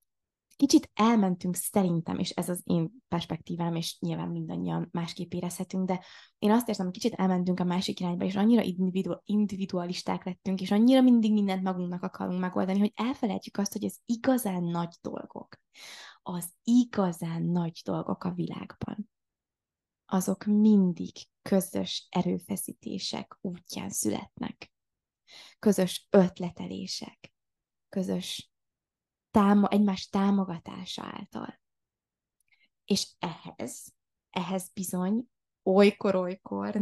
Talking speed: 105 wpm